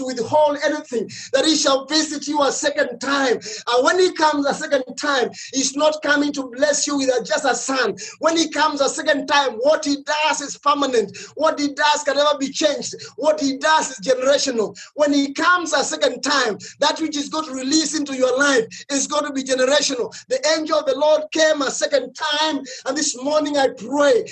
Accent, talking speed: South African, 205 wpm